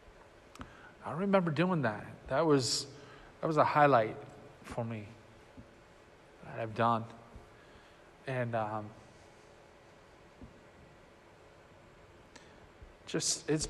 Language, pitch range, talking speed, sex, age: English, 120-160 Hz, 80 wpm, male, 40-59